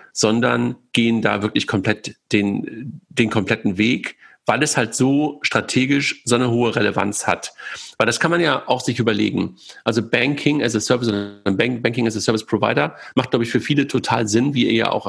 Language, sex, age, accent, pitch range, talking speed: German, male, 50-69, German, 105-135 Hz, 195 wpm